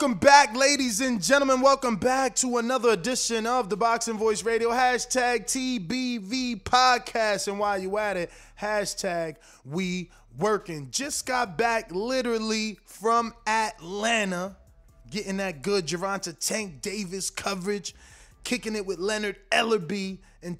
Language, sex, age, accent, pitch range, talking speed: English, male, 20-39, American, 180-230 Hz, 130 wpm